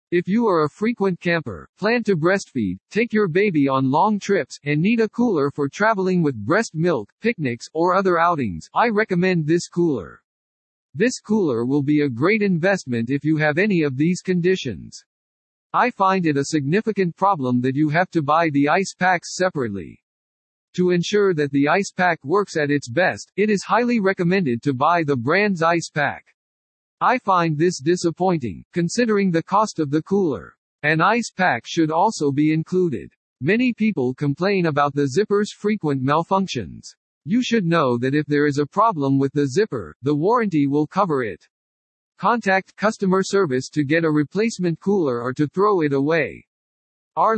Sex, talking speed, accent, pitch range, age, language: male, 175 wpm, American, 145-195 Hz, 50-69, English